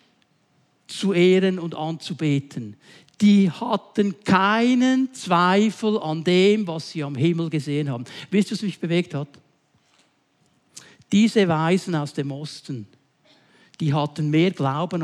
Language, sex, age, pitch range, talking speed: German, male, 60-79, 155-220 Hz, 125 wpm